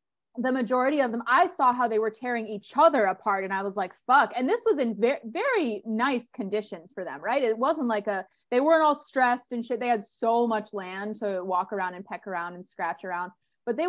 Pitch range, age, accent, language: 195-255 Hz, 20-39, American, English